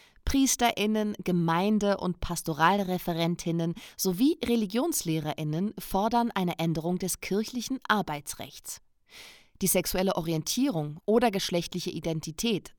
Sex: female